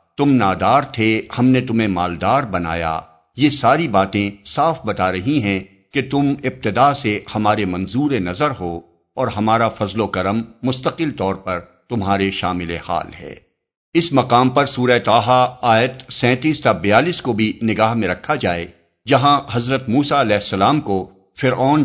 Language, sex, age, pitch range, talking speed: Urdu, male, 50-69, 95-125 Hz, 155 wpm